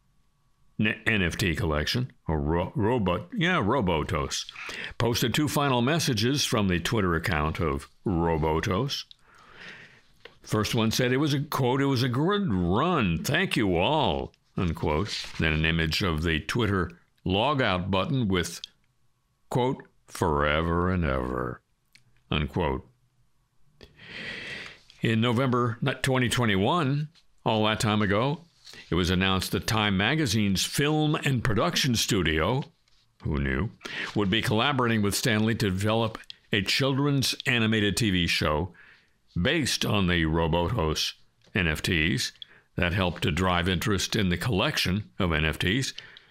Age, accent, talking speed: 60-79, American, 120 wpm